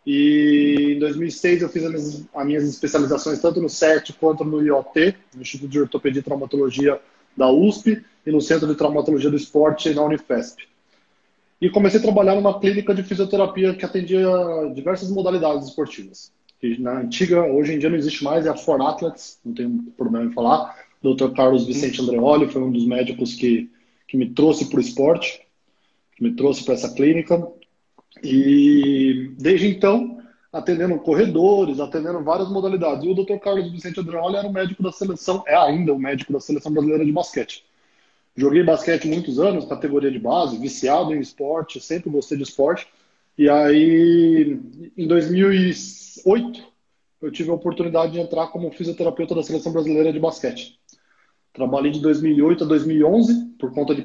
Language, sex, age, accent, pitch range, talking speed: Portuguese, male, 20-39, Brazilian, 140-185 Hz, 170 wpm